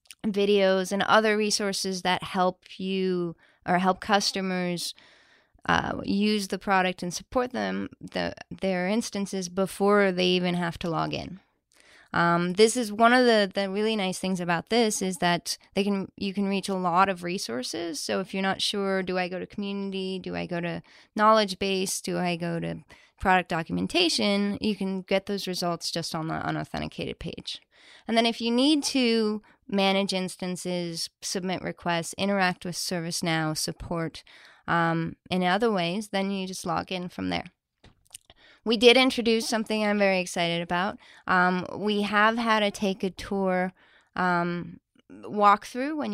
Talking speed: 165 wpm